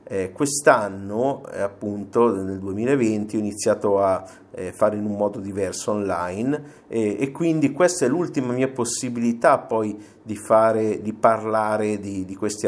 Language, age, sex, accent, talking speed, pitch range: Italian, 50-69, male, native, 140 wpm, 100-120 Hz